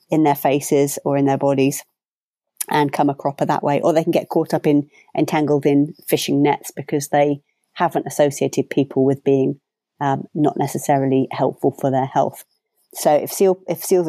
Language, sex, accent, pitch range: English, female, British, 145-175 Hz